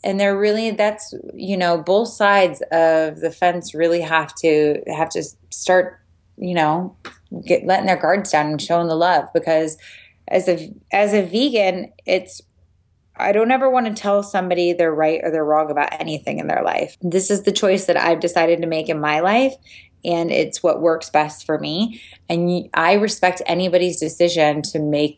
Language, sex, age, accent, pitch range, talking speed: English, female, 20-39, American, 160-200 Hz, 180 wpm